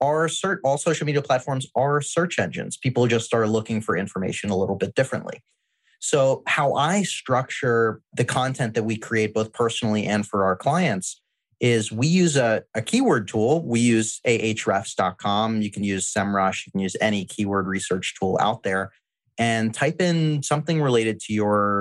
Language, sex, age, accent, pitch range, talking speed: English, male, 30-49, American, 100-125 Hz, 175 wpm